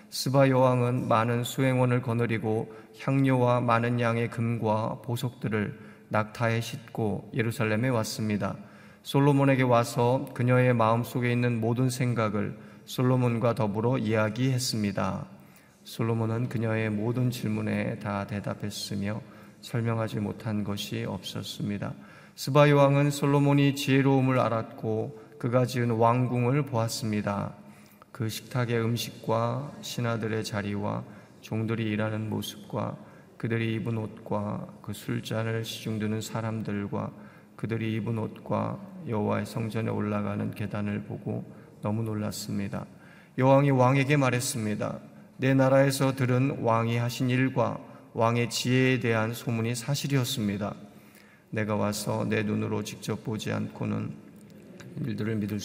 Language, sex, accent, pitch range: Korean, male, native, 110-125 Hz